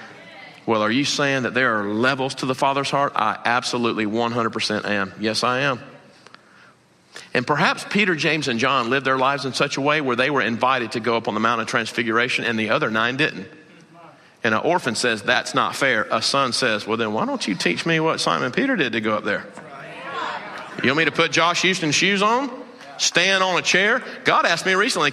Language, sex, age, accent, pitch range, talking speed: English, male, 40-59, American, 110-150 Hz, 215 wpm